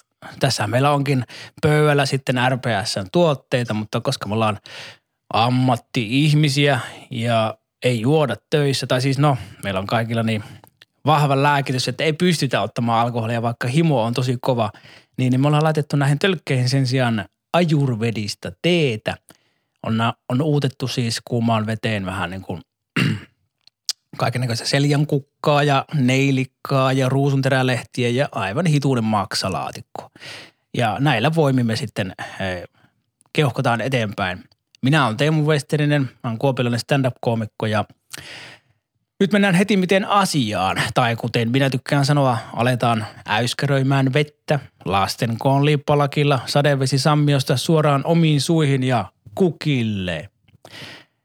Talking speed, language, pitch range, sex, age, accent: 120 wpm, Finnish, 115-145 Hz, male, 20-39, native